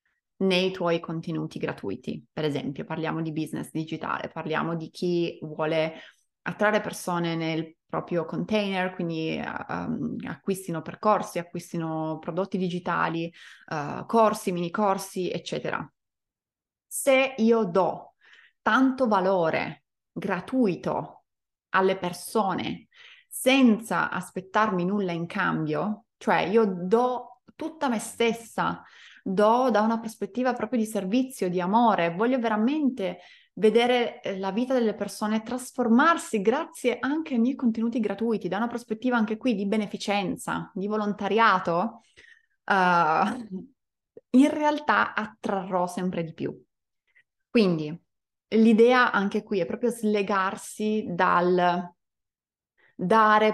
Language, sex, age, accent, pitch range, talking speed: Italian, female, 20-39, native, 180-235 Hz, 105 wpm